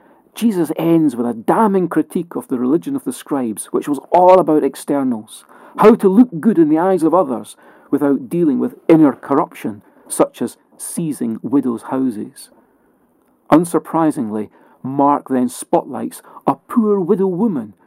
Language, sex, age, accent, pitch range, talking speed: English, male, 40-59, British, 150-245 Hz, 150 wpm